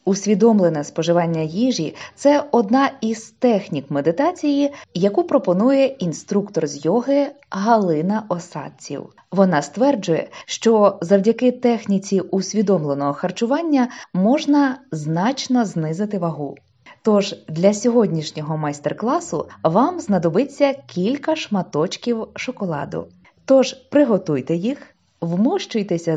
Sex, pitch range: female, 180-245 Hz